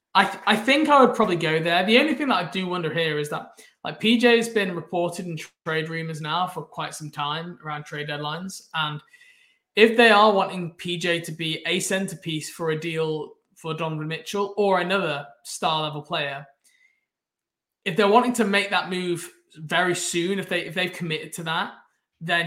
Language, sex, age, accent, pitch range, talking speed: English, male, 20-39, British, 155-195 Hz, 195 wpm